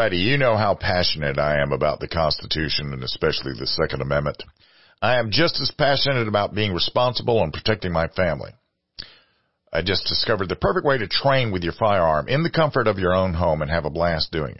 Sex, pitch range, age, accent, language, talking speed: male, 80-115 Hz, 50-69, American, English, 200 wpm